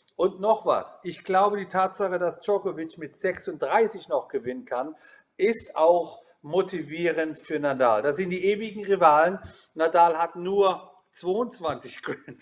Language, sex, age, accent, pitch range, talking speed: German, male, 40-59, German, 155-195 Hz, 140 wpm